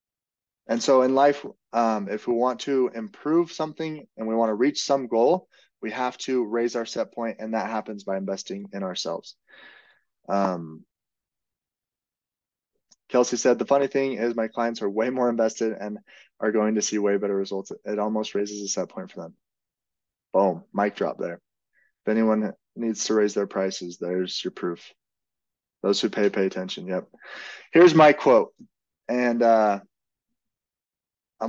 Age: 20-39